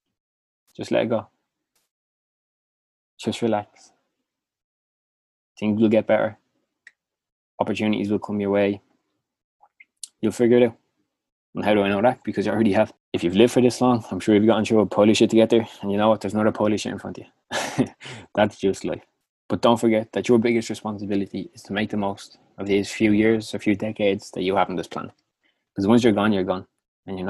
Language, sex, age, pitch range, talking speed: English, male, 20-39, 95-110 Hz, 205 wpm